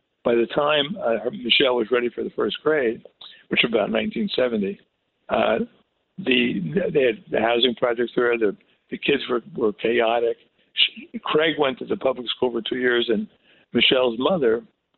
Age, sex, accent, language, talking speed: 60-79, male, American, English, 160 wpm